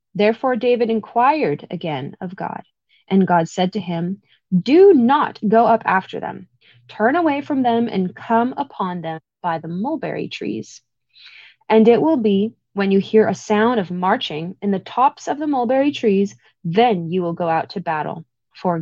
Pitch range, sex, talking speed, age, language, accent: 175-230 Hz, female, 175 wpm, 20-39, English, American